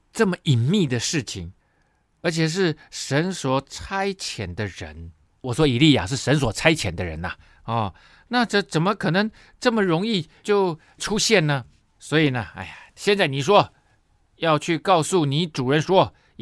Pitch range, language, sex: 125-200 Hz, Chinese, male